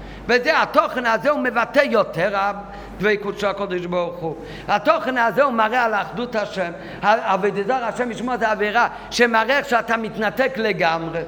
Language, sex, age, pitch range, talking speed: Hebrew, male, 50-69, 180-255 Hz, 150 wpm